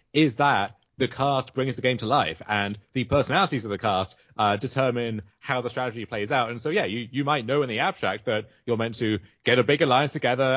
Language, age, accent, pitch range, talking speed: English, 30-49, British, 110-140 Hz, 235 wpm